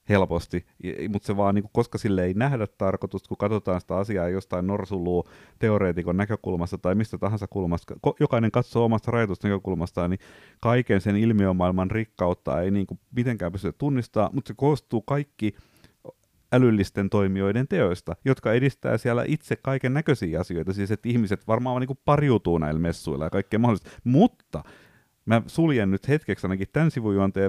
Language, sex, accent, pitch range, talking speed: Finnish, male, native, 95-125 Hz, 150 wpm